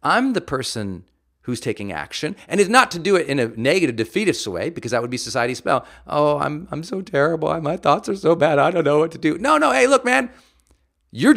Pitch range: 105-160 Hz